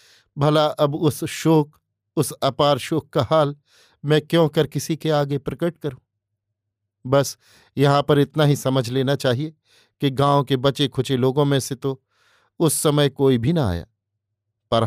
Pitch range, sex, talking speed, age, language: 115-145 Hz, male, 165 wpm, 50-69, Hindi